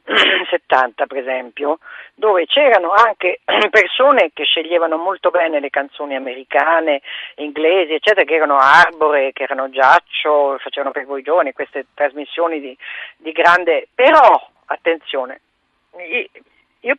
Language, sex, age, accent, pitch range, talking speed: Italian, female, 40-59, native, 145-215 Hz, 120 wpm